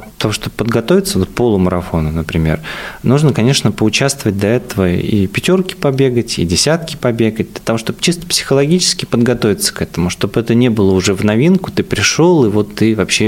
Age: 20-39